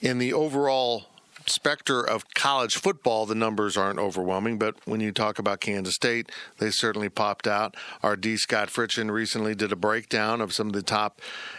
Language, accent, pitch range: English, American, 110-135 Hz